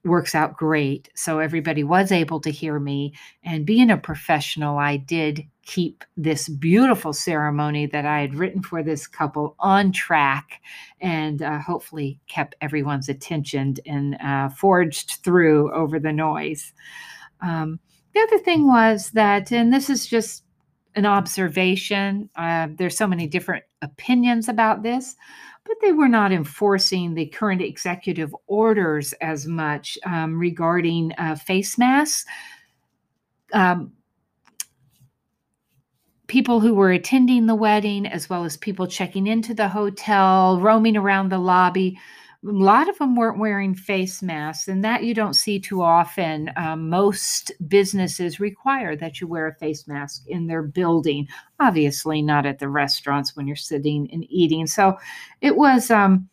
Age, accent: 50-69, American